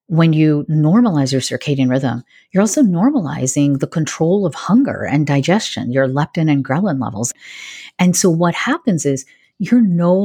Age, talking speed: 40-59, 160 wpm